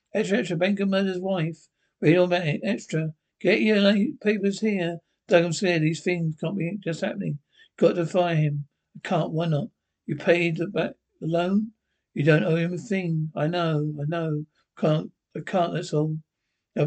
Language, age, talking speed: English, 60-79, 180 wpm